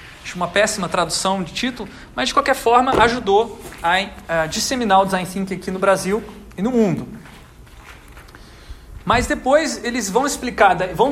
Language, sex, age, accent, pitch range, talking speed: Portuguese, male, 40-59, Brazilian, 180-220 Hz, 150 wpm